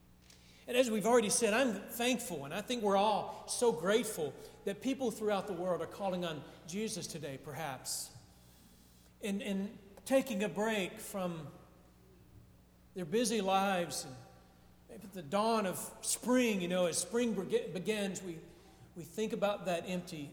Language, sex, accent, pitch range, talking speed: English, male, American, 170-240 Hz, 155 wpm